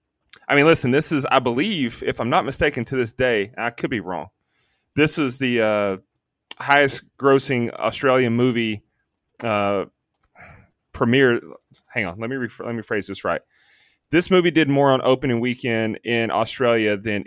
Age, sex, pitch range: 30-49, male, 110-140 Hz